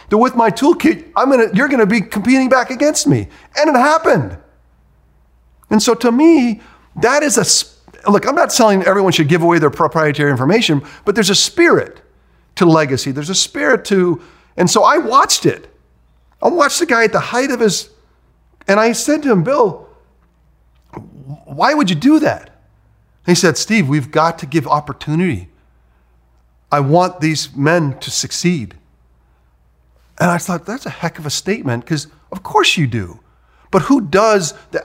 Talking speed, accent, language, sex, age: 170 wpm, American, English, male, 40-59